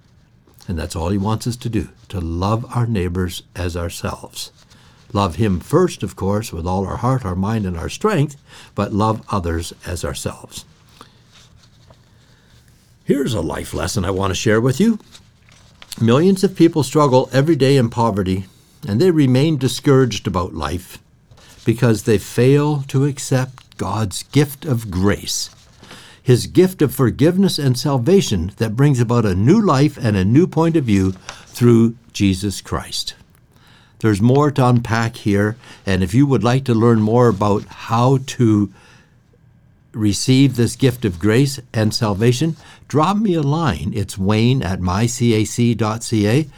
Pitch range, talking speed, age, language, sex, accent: 100-135 Hz, 150 wpm, 60-79, English, male, American